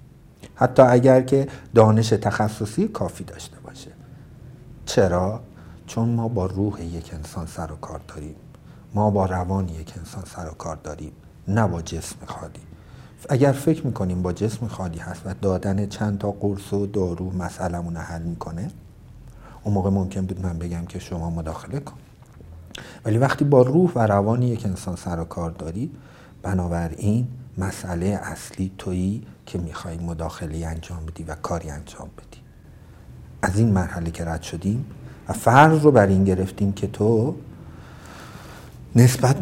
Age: 60-79